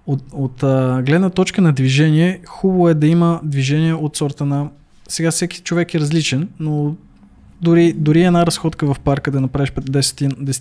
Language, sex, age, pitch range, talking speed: Bulgarian, male, 20-39, 130-155 Hz, 160 wpm